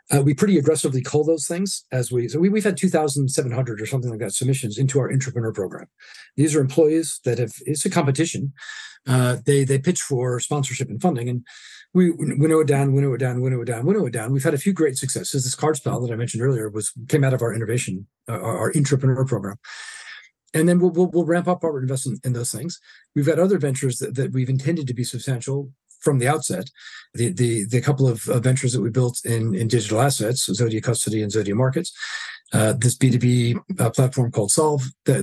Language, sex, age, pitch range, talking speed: English, male, 40-59, 125-155 Hz, 220 wpm